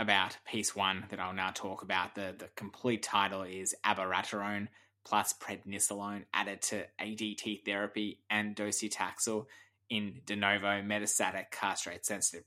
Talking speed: 135 wpm